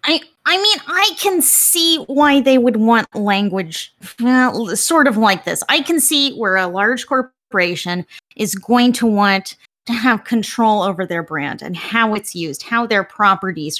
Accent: American